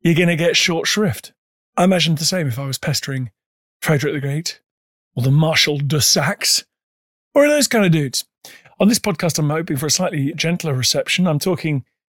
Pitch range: 140-180 Hz